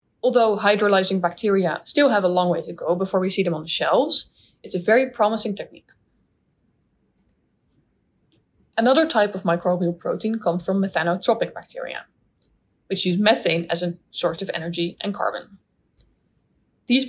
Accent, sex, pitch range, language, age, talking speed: Dutch, female, 180-230 Hz, English, 10-29, 150 wpm